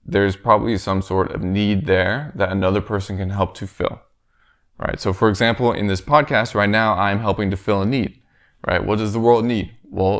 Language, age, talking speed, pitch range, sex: English, 20-39, 210 wpm, 95-115 Hz, male